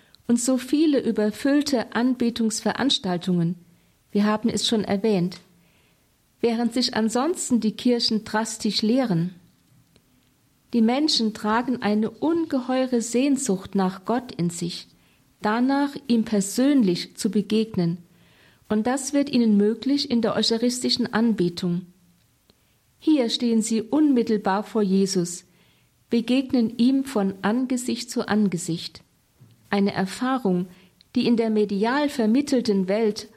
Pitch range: 195-245 Hz